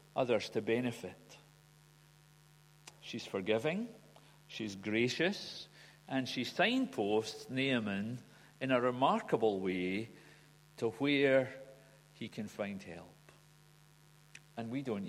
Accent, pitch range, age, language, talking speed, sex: British, 115-150 Hz, 50-69, English, 95 wpm, male